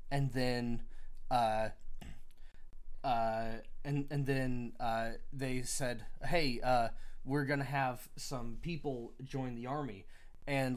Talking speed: 125 wpm